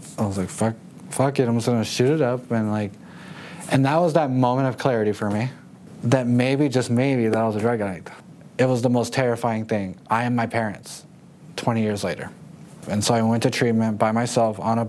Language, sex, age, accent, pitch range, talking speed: English, male, 20-39, American, 110-130 Hz, 225 wpm